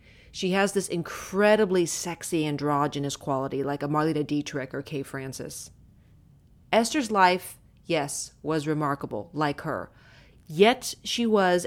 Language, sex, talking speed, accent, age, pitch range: English, female, 125 wpm, American, 30-49, 150-190 Hz